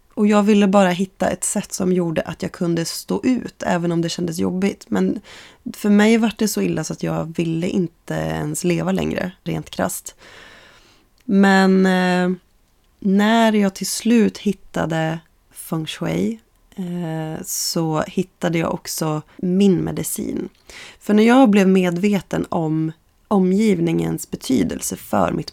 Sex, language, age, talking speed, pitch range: female, Swedish, 20-39, 145 wpm, 165-205 Hz